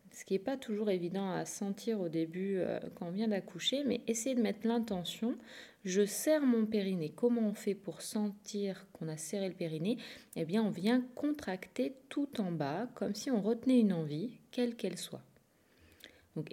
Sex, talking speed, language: female, 190 wpm, French